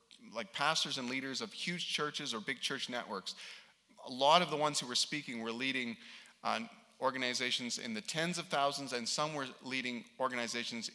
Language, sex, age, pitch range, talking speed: English, male, 30-49, 125-195 Hz, 180 wpm